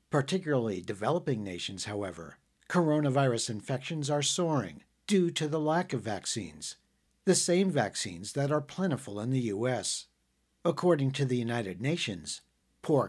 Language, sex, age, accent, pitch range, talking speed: English, male, 50-69, American, 110-150 Hz, 135 wpm